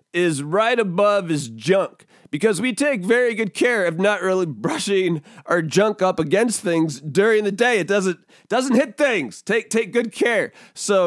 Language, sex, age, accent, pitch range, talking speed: English, male, 30-49, American, 185-255 Hz, 180 wpm